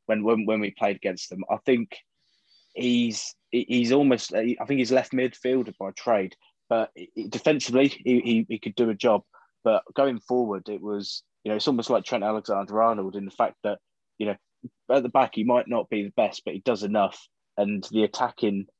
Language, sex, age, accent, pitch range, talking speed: English, male, 20-39, British, 100-120 Hz, 200 wpm